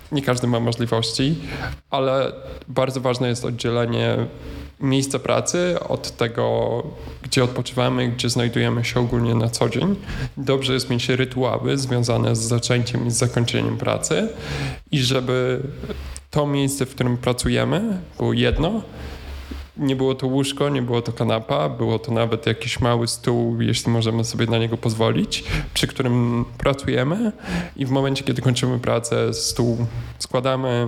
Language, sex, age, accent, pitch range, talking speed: Polish, male, 10-29, native, 115-130 Hz, 140 wpm